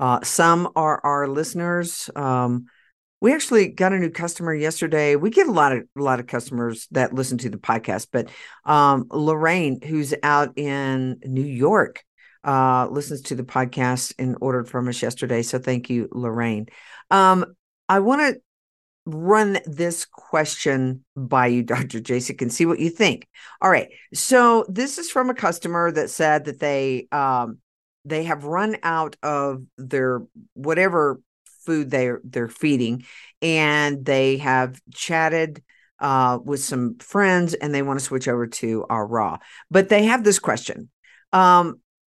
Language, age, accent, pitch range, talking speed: English, 50-69, American, 130-175 Hz, 160 wpm